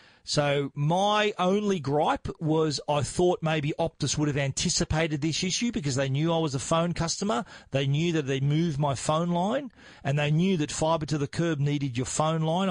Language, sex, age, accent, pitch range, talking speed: English, male, 40-59, Australian, 140-165 Hz, 200 wpm